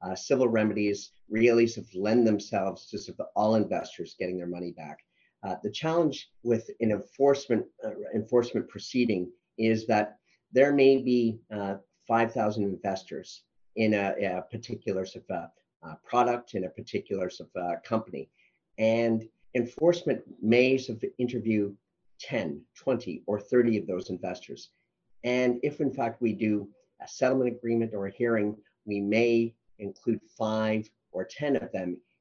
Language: English